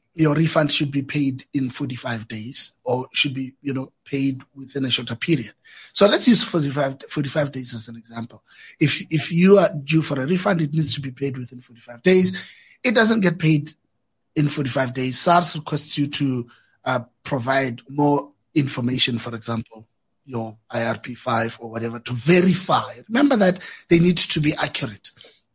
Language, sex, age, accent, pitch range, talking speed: English, male, 30-49, South African, 125-155 Hz, 170 wpm